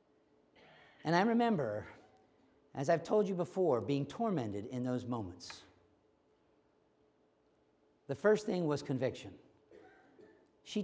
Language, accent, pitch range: English, American, 125-175 Hz